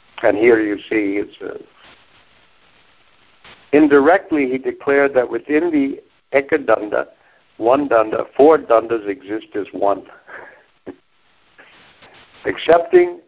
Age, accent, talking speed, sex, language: 60-79, American, 90 wpm, male, English